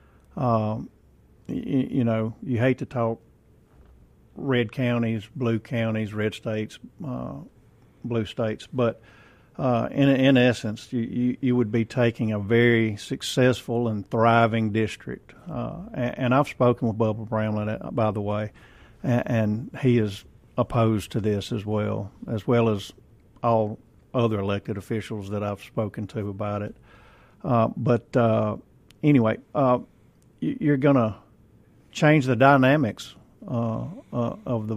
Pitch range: 110-125 Hz